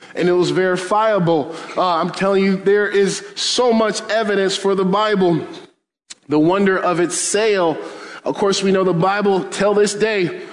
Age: 20-39